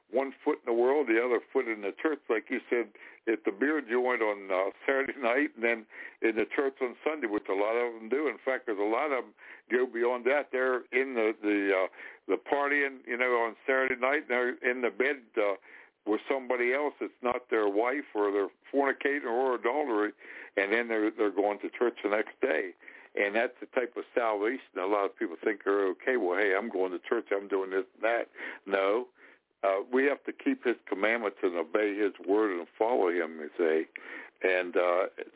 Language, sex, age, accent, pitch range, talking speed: English, male, 60-79, American, 110-155 Hz, 215 wpm